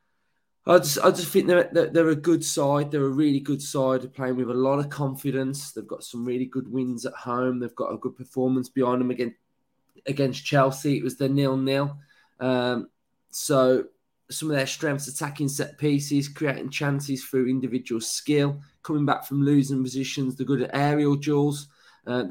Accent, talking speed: British, 190 wpm